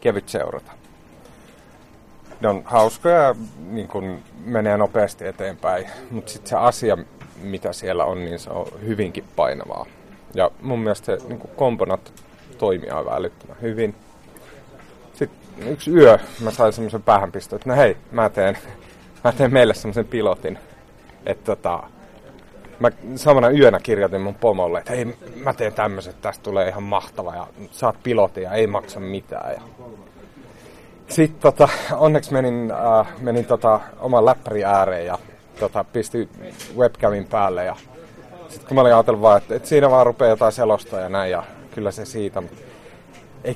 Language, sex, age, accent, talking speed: Finnish, male, 30-49, native, 140 wpm